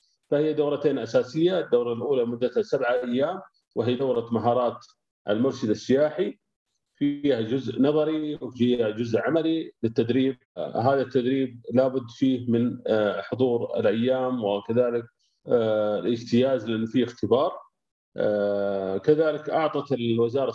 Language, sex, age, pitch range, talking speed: Arabic, male, 30-49, 120-150 Hz, 100 wpm